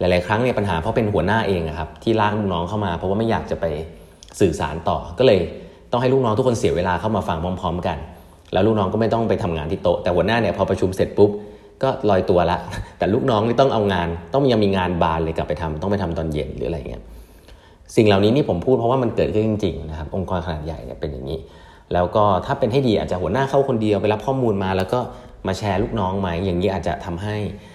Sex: male